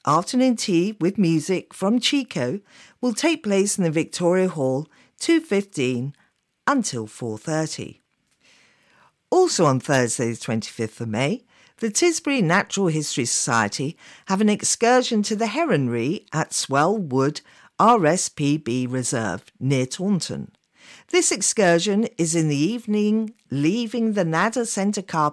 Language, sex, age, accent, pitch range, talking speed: English, female, 50-69, British, 150-220 Hz, 125 wpm